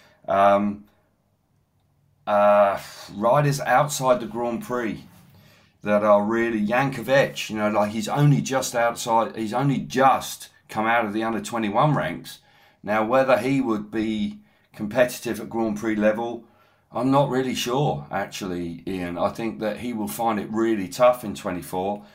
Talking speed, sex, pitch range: 150 wpm, male, 105-120 Hz